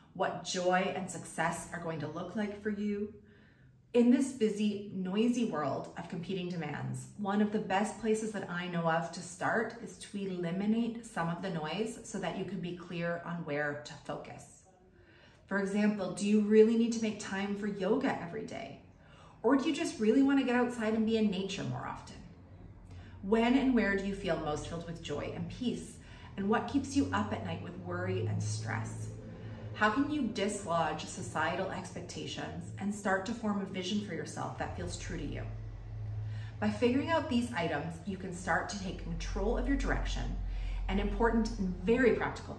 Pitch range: 145-215 Hz